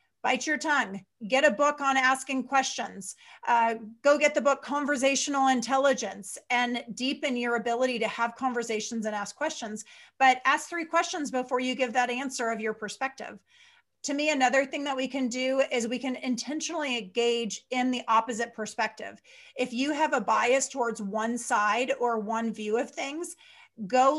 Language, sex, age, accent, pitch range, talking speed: English, female, 30-49, American, 230-285 Hz, 170 wpm